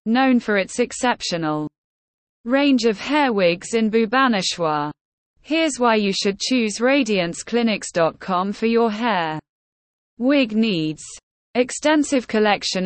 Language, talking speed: English, 105 wpm